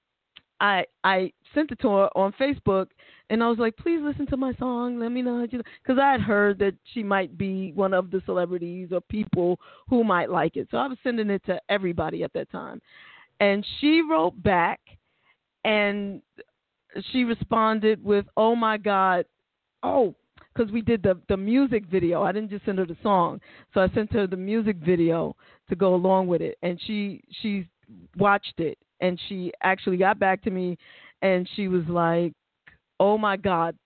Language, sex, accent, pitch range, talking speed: English, female, American, 190-250 Hz, 190 wpm